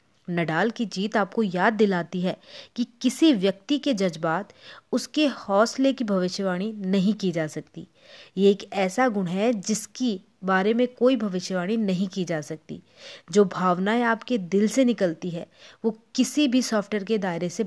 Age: 30-49